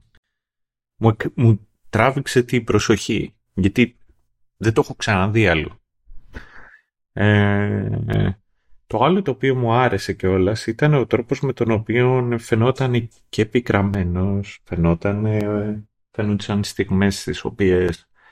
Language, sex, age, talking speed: Greek, male, 30-49, 110 wpm